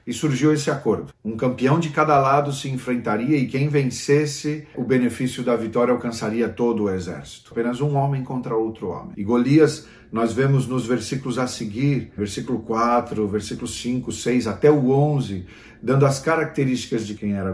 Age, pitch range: 40-59, 115-150 Hz